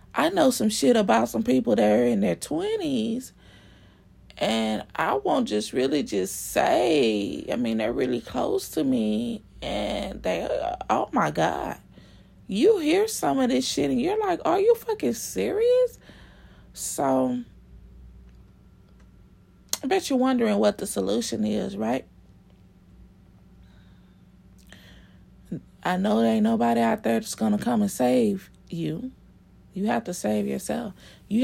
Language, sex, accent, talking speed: English, female, American, 140 wpm